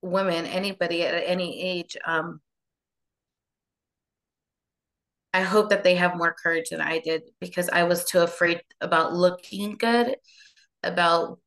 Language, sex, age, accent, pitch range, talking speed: English, female, 20-39, American, 175-205 Hz, 130 wpm